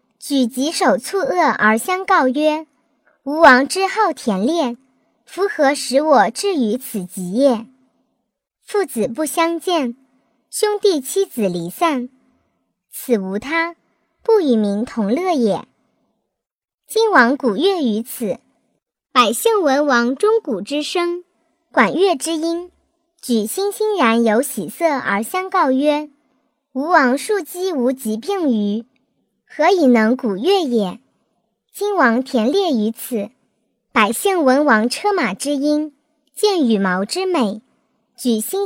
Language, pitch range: Chinese, 230-335 Hz